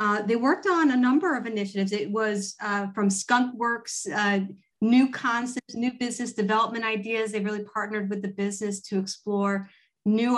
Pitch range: 195-220 Hz